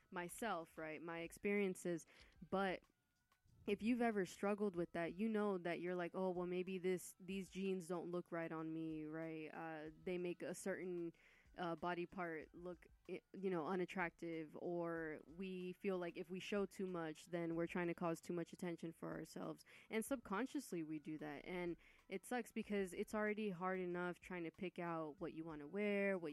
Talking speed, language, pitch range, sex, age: 190 wpm, English, 170-195 Hz, female, 20-39